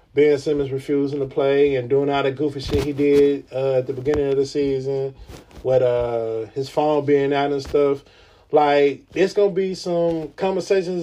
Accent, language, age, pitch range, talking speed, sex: American, English, 20-39, 135-170 Hz, 185 wpm, male